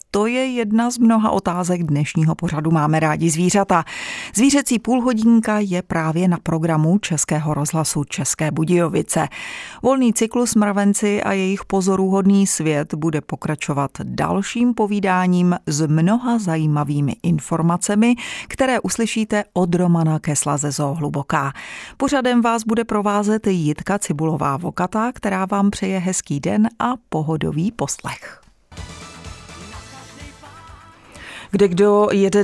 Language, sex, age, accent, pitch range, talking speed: Czech, female, 30-49, native, 160-205 Hz, 110 wpm